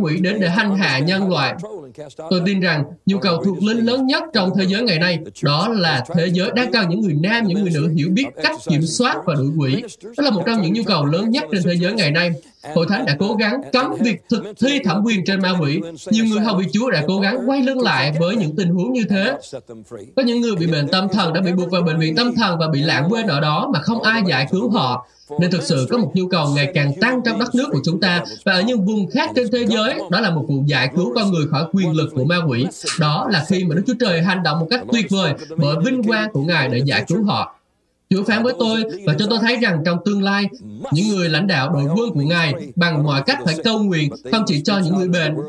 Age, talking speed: 20-39, 270 wpm